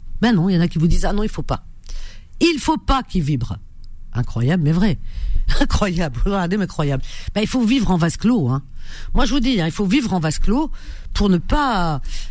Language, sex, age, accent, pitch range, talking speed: French, female, 50-69, French, 125-195 Hz, 230 wpm